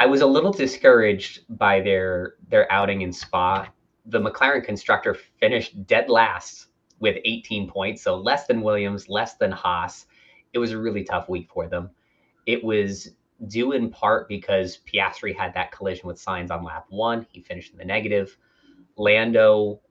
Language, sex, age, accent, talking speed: English, male, 30-49, American, 170 wpm